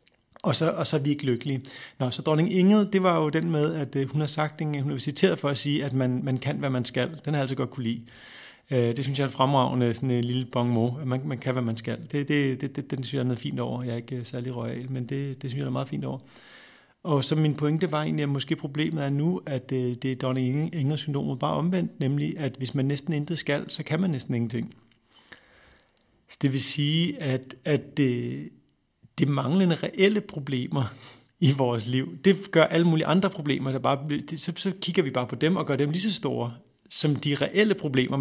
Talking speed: 245 wpm